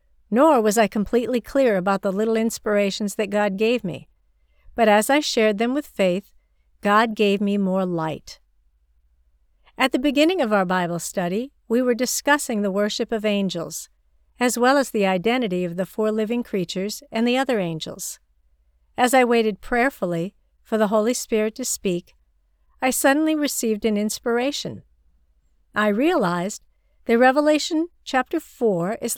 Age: 60-79